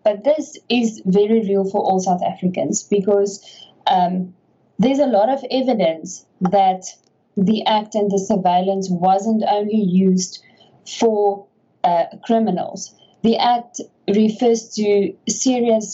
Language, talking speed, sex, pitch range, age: English, 125 wpm, female, 185-225 Hz, 20-39